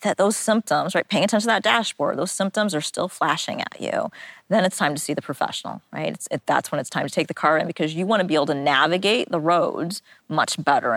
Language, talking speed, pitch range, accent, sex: English, 255 wpm, 155-195 Hz, American, female